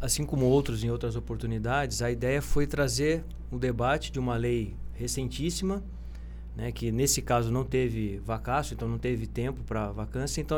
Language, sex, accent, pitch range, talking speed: Portuguese, male, Brazilian, 115-150 Hz, 175 wpm